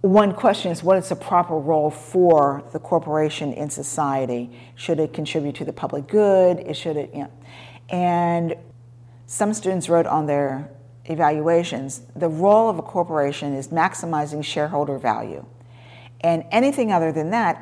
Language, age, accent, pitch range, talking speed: English, 50-69, American, 135-175 Hz, 155 wpm